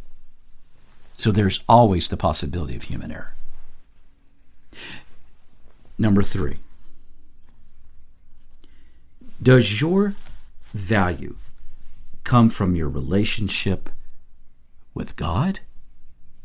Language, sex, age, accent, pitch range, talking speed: English, male, 50-69, American, 70-110 Hz, 70 wpm